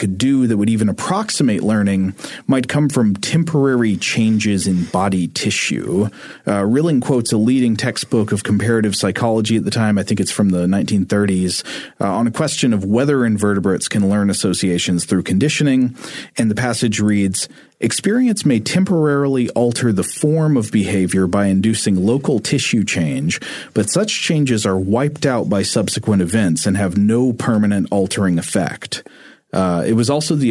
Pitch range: 100-125 Hz